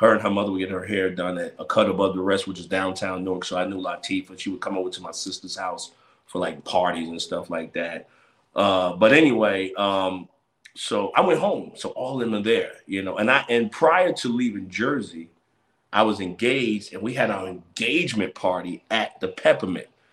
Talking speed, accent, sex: 210 wpm, American, male